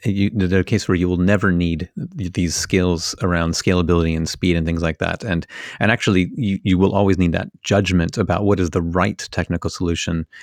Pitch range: 90-105 Hz